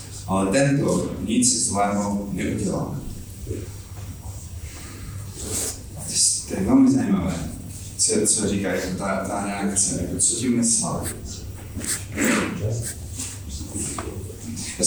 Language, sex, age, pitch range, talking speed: Czech, male, 30-49, 100-135 Hz, 90 wpm